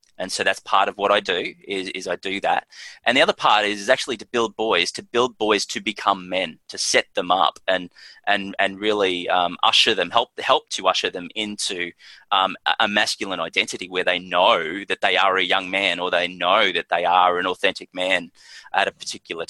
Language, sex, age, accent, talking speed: English, male, 20-39, Australian, 220 wpm